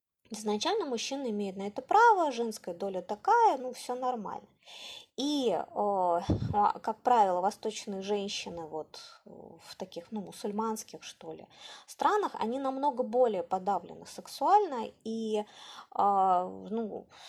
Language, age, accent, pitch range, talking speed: Russian, 20-39, native, 205-290 Hz, 110 wpm